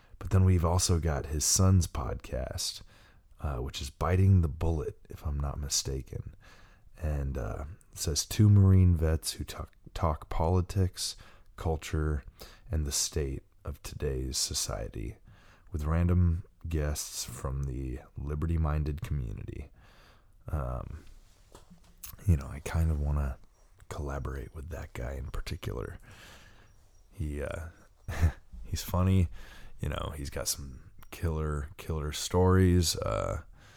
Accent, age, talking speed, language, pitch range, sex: American, 30-49, 125 wpm, English, 80-95 Hz, male